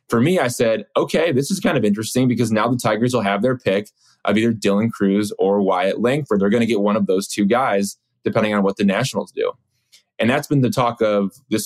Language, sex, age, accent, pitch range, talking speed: English, male, 20-39, American, 100-125 Hz, 240 wpm